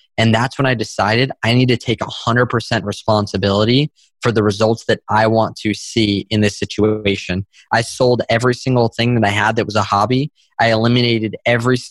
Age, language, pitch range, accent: 20-39, English, 105-125 Hz, American